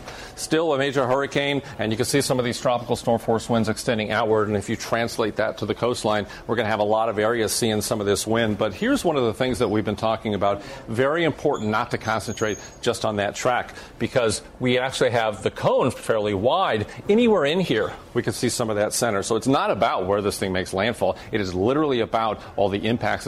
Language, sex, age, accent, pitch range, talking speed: English, male, 40-59, American, 105-120 Hz, 235 wpm